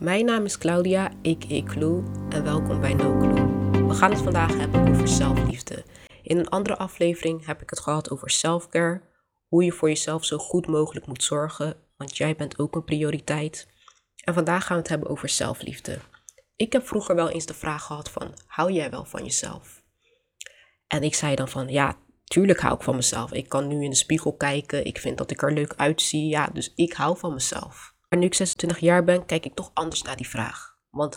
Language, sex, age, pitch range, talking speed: Dutch, female, 20-39, 145-180 Hz, 210 wpm